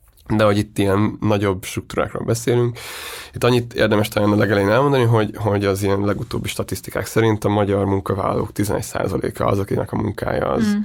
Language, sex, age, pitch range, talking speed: Hungarian, male, 20-39, 100-120 Hz, 165 wpm